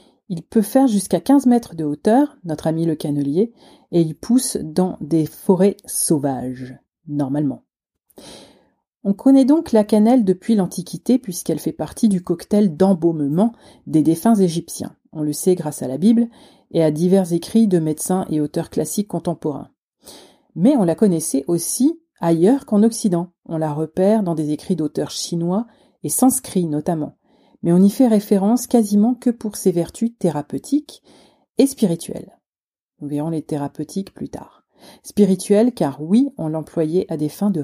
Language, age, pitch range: French, 40-59, 155-220 Hz